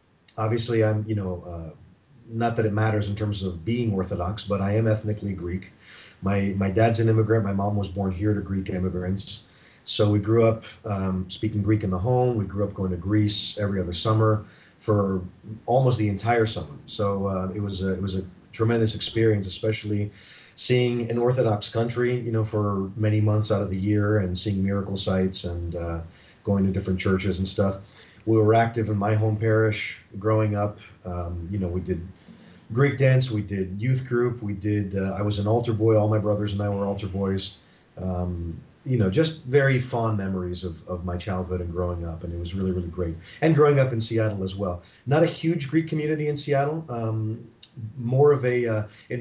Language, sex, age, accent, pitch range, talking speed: English, male, 40-59, American, 95-115 Hz, 205 wpm